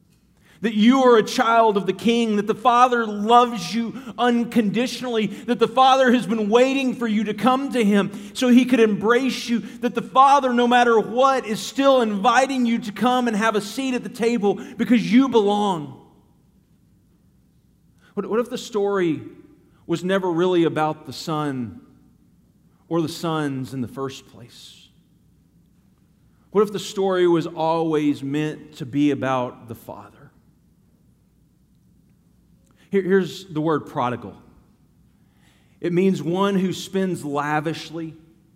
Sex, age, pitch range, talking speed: male, 40-59, 155-230 Hz, 145 wpm